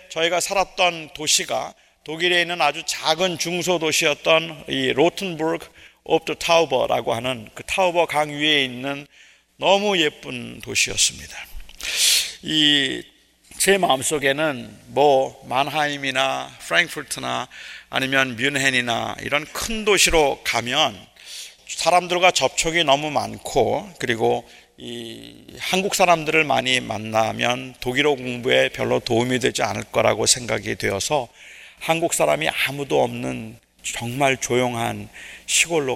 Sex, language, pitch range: male, Korean, 120-160 Hz